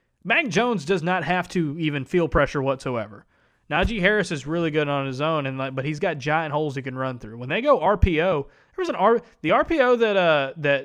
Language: English